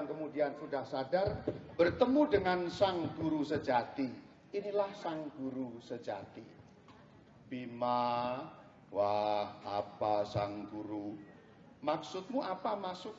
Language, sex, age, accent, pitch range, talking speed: Indonesian, male, 40-59, native, 135-205 Hz, 90 wpm